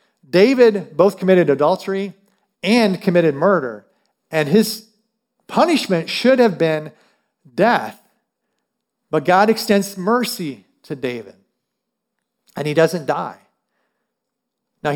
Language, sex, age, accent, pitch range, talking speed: English, male, 50-69, American, 180-230 Hz, 100 wpm